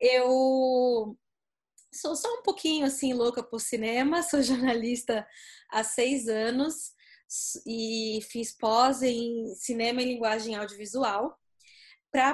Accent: Brazilian